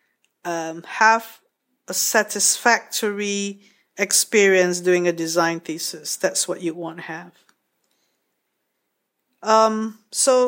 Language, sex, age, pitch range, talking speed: English, female, 50-69, 180-235 Hz, 95 wpm